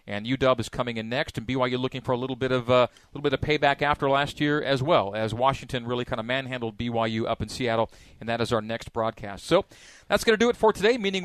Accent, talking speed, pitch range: American, 260 wpm, 120-145 Hz